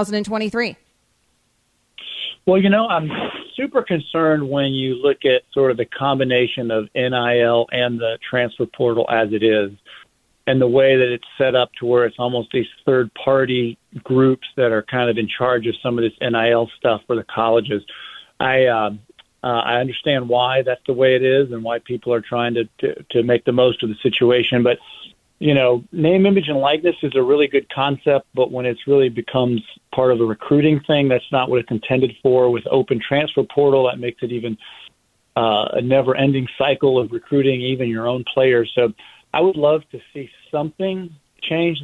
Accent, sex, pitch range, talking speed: American, male, 120-145 Hz, 190 wpm